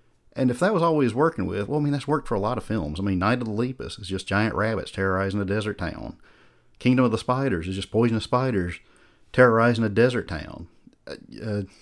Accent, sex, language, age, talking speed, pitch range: American, male, English, 50-69, 225 wpm, 95-125 Hz